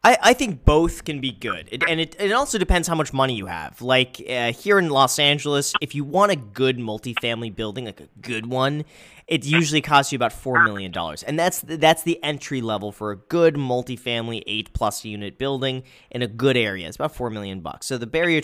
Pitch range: 105-145 Hz